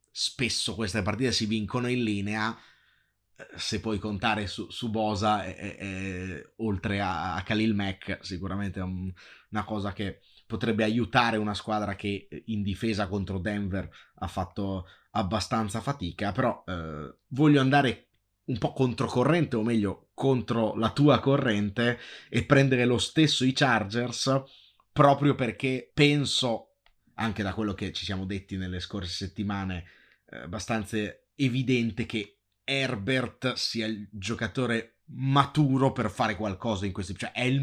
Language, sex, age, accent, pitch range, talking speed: Italian, male, 30-49, native, 100-120 Hz, 140 wpm